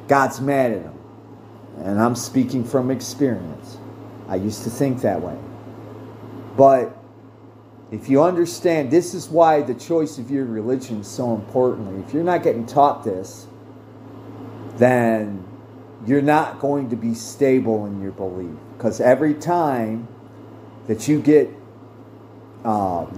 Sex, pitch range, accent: male, 115-135 Hz, American